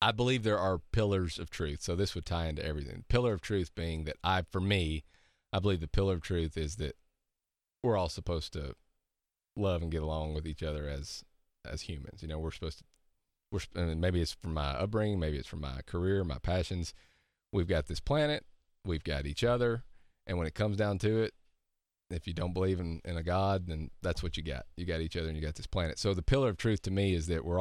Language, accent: English, American